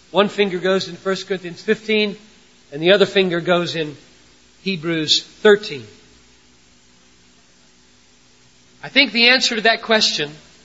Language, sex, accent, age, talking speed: English, male, American, 50-69, 125 wpm